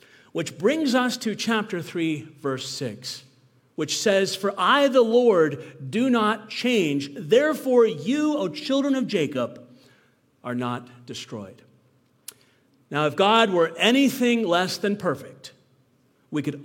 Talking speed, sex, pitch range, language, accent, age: 130 wpm, male, 130-210 Hz, English, American, 50-69